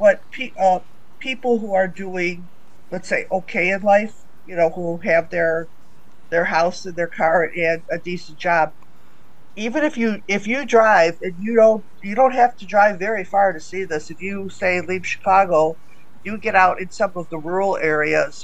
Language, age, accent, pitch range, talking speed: English, 50-69, American, 165-195 Hz, 190 wpm